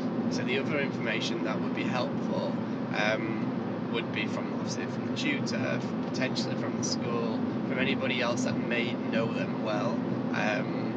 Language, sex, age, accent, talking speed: English, male, 20-39, British, 165 wpm